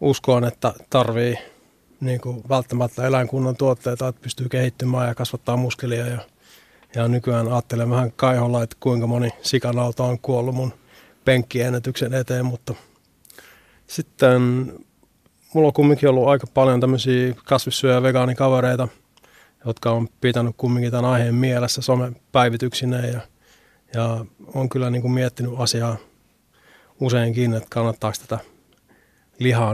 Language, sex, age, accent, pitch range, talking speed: Finnish, male, 30-49, native, 120-130 Hz, 115 wpm